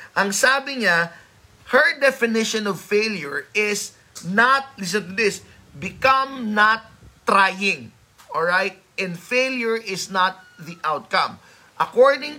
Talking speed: 110 wpm